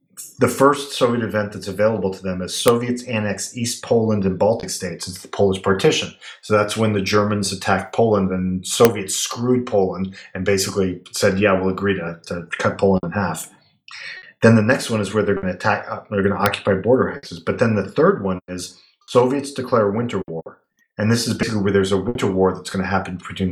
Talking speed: 215 wpm